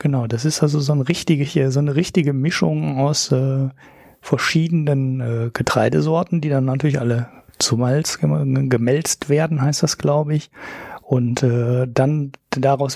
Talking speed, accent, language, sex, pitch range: 155 wpm, German, German, male, 135-170 Hz